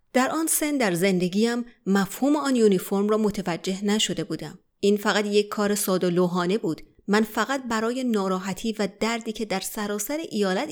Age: 30-49